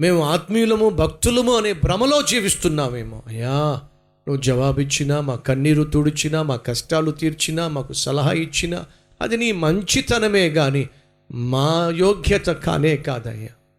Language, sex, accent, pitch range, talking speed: Telugu, male, native, 125-175 Hz, 85 wpm